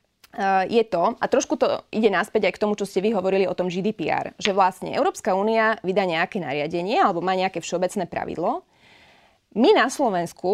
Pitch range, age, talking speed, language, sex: 180-235 Hz, 20-39, 190 wpm, Slovak, female